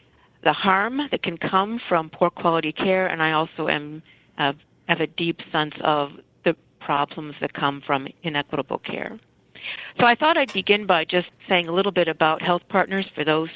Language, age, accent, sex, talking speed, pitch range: English, 50-69, American, female, 185 wpm, 150-180 Hz